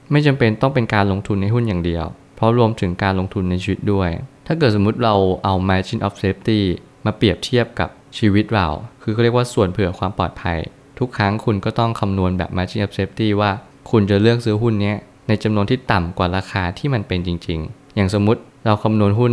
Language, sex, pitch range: Thai, male, 95-115 Hz